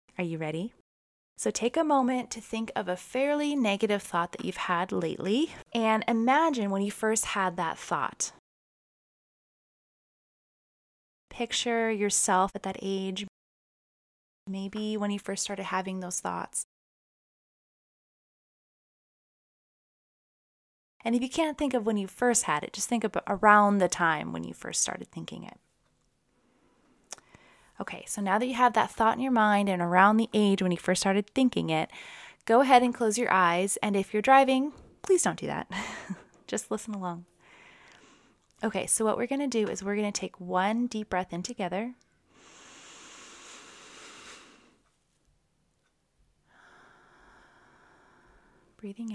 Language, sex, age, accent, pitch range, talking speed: English, female, 20-39, American, 185-235 Hz, 145 wpm